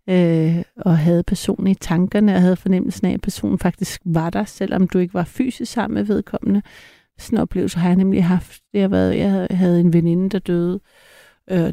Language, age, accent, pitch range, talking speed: Danish, 60-79, native, 175-200 Hz, 185 wpm